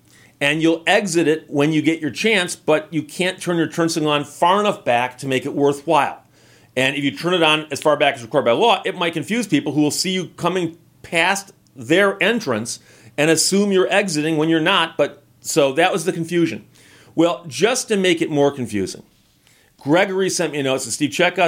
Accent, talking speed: American, 215 wpm